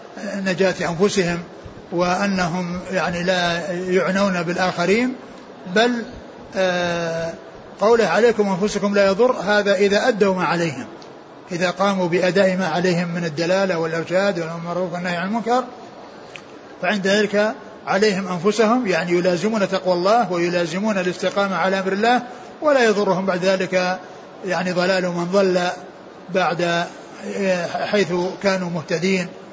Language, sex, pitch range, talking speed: Arabic, male, 175-200 Hz, 110 wpm